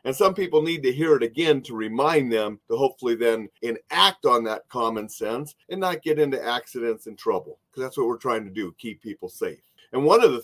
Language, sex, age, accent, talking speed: English, male, 40-59, American, 230 wpm